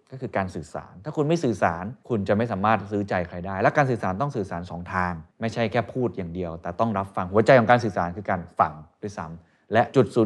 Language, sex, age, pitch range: Thai, male, 20-39, 95-130 Hz